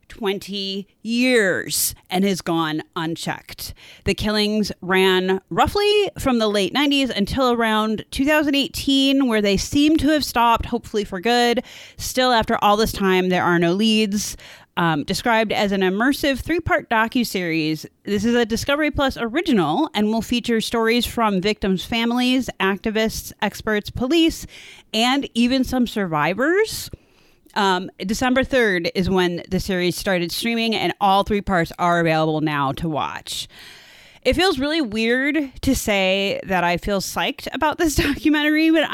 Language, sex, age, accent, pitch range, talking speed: English, female, 30-49, American, 190-270 Hz, 145 wpm